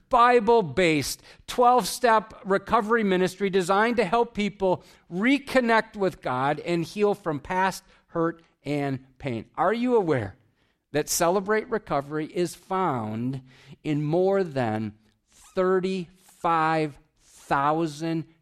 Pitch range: 150-195 Hz